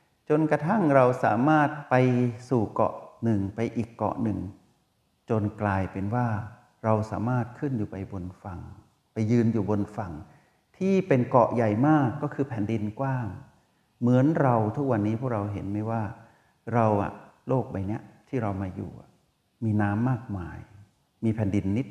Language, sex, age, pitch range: Thai, male, 60-79, 100-125 Hz